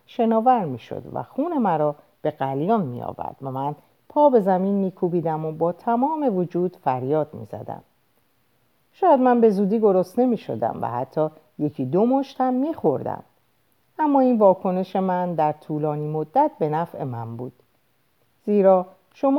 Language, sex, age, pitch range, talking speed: Persian, female, 50-69, 150-220 Hz, 150 wpm